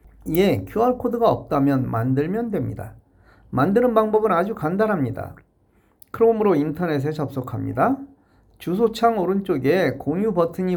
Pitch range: 120-195 Hz